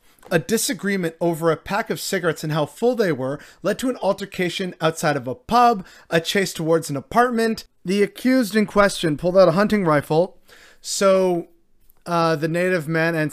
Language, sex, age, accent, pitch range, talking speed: English, male, 30-49, American, 155-200 Hz, 180 wpm